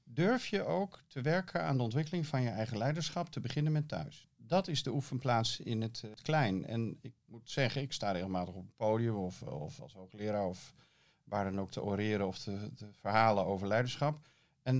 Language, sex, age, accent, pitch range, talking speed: Dutch, male, 40-59, Dutch, 105-140 Hz, 205 wpm